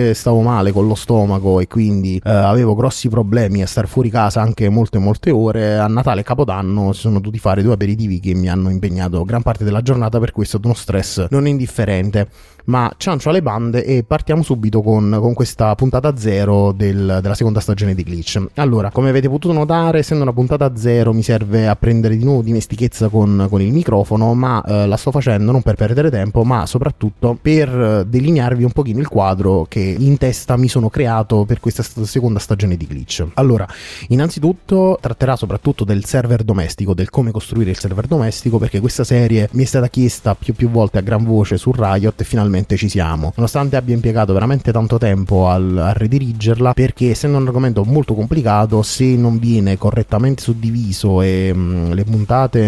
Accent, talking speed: native, 185 wpm